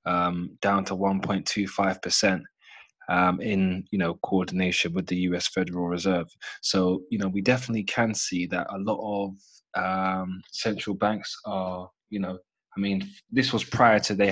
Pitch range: 95-105 Hz